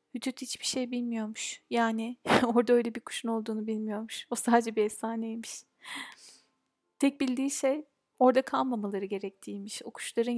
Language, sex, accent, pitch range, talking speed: Turkish, female, native, 220-245 Hz, 135 wpm